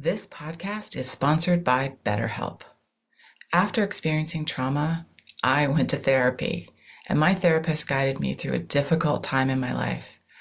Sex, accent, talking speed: female, American, 145 wpm